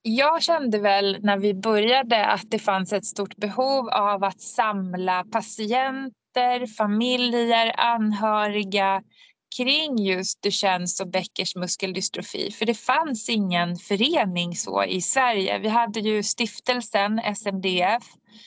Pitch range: 185-225 Hz